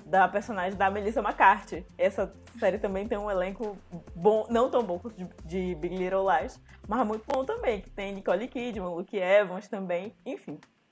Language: Portuguese